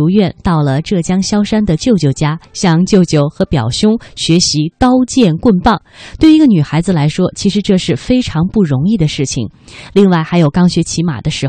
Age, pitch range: 20-39, 155-215 Hz